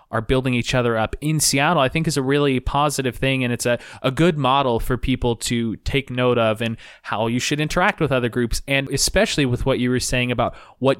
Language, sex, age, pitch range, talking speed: English, male, 20-39, 120-135 Hz, 235 wpm